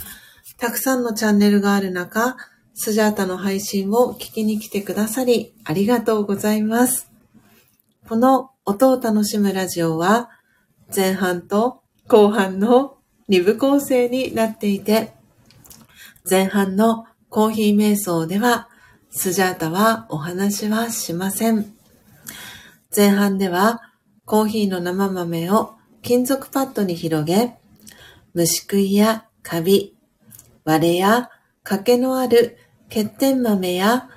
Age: 40-59